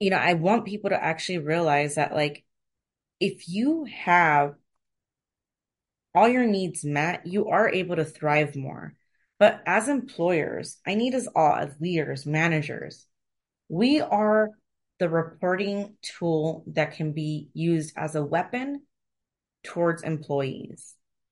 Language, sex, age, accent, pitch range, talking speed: English, female, 30-49, American, 145-180 Hz, 130 wpm